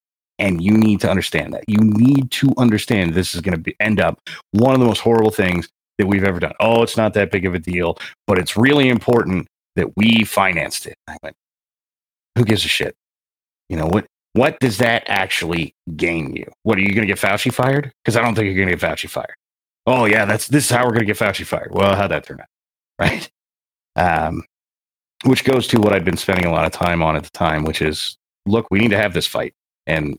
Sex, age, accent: male, 30-49, American